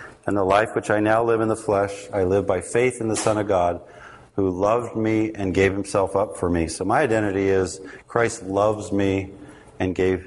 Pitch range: 90-110 Hz